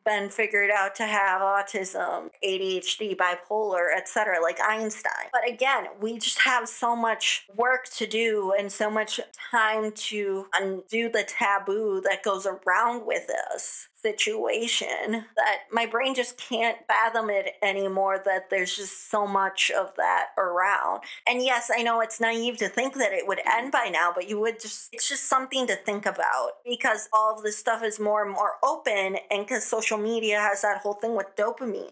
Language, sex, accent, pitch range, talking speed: English, female, American, 200-240 Hz, 180 wpm